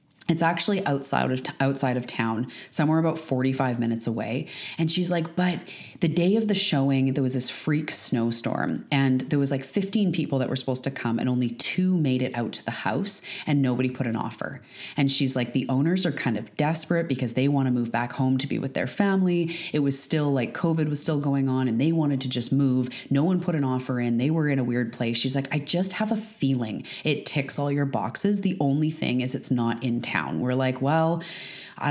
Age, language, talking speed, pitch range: 30-49, English, 230 wpm, 130-165 Hz